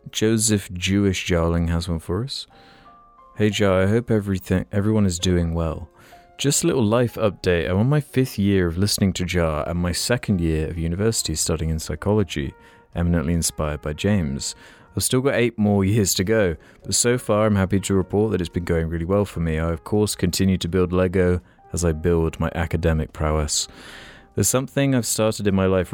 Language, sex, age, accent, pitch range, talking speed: English, male, 30-49, British, 85-105 Hz, 200 wpm